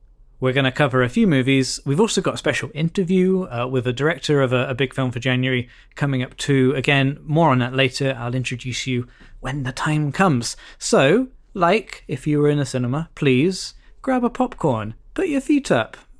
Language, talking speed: English, 205 wpm